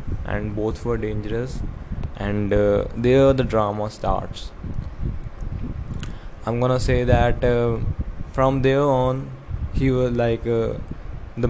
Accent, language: Indian, English